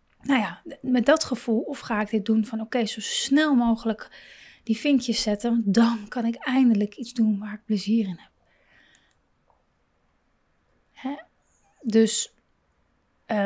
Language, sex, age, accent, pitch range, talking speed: Dutch, female, 30-49, Dutch, 210-260 Hz, 135 wpm